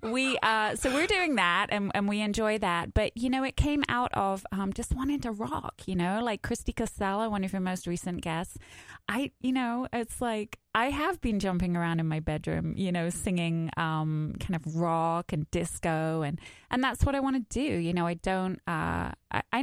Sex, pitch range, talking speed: female, 160-210 Hz, 215 wpm